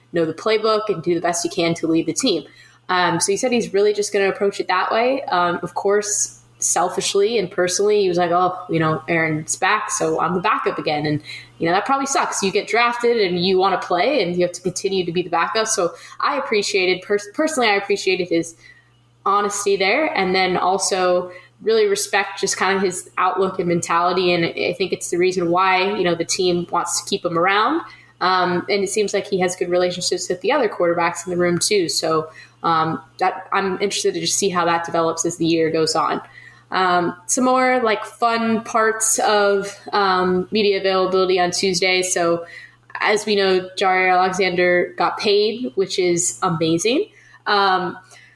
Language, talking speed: English, 200 wpm